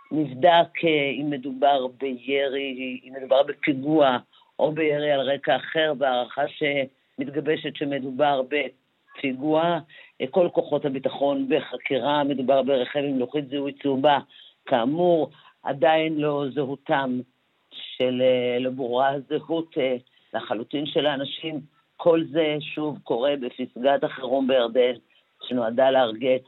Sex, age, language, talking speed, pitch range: female, 50-69, Hebrew, 105 wpm, 125-150 Hz